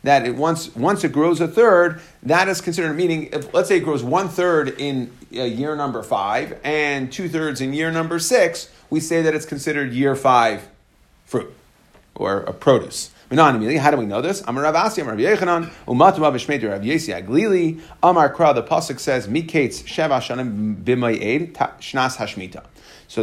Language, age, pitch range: English, 40-59, 125-170 Hz